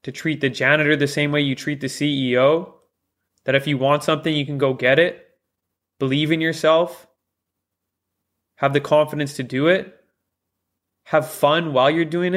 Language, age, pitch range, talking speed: English, 20-39, 125-155 Hz, 170 wpm